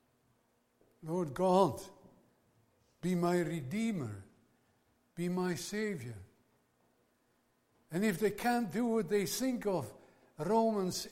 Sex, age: male, 60-79